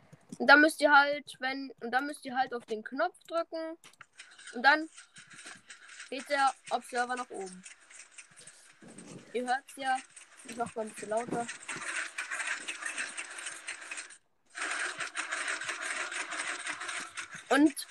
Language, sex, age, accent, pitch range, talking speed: German, female, 10-29, German, 240-320 Hz, 105 wpm